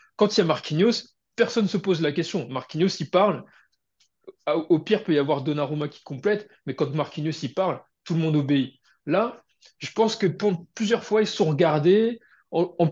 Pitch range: 140-185 Hz